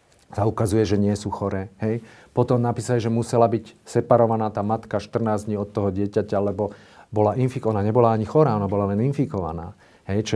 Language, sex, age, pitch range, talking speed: Slovak, male, 40-59, 95-115 Hz, 190 wpm